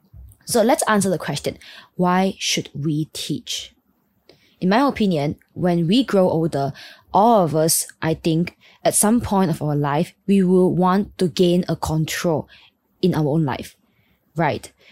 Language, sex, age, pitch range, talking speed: English, female, 20-39, 165-210 Hz, 155 wpm